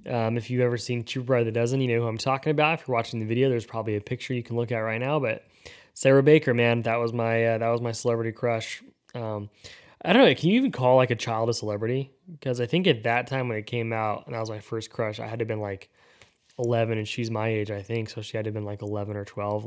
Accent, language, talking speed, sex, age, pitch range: American, English, 285 wpm, male, 20-39, 110-135 Hz